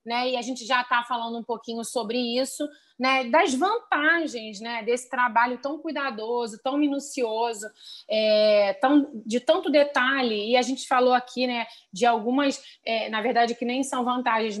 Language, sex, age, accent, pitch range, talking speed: Portuguese, female, 30-49, Brazilian, 230-275 Hz, 155 wpm